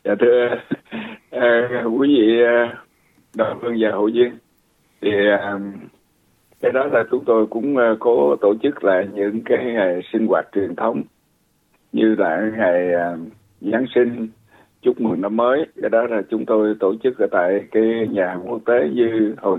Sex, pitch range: male, 100-120 Hz